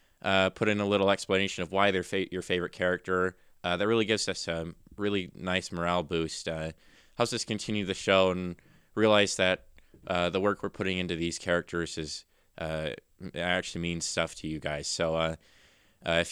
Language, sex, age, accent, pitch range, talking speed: English, male, 20-39, American, 90-110 Hz, 190 wpm